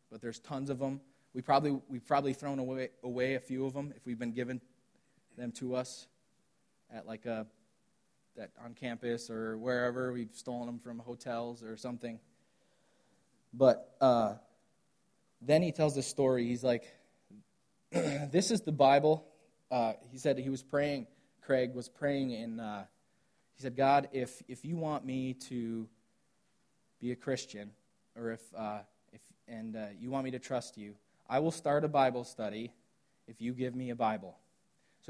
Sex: male